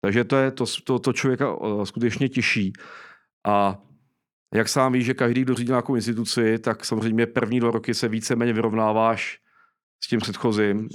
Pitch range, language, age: 110-125 Hz, Czech, 40-59